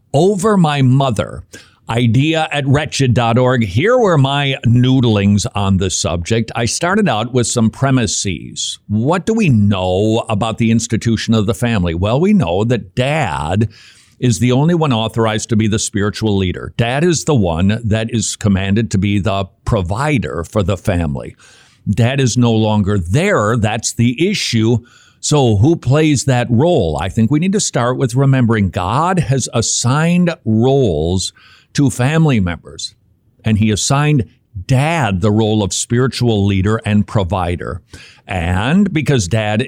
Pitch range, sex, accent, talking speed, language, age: 105-135 Hz, male, American, 150 wpm, English, 50-69